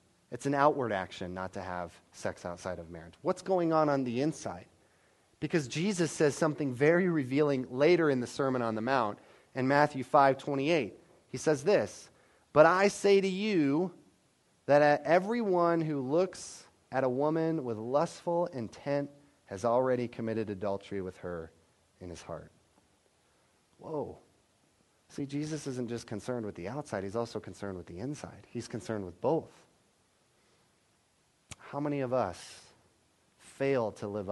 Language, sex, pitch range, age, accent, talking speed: English, male, 95-140 Hz, 30-49, American, 150 wpm